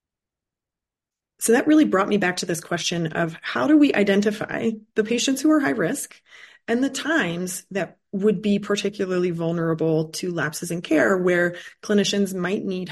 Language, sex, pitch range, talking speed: English, female, 170-210 Hz, 165 wpm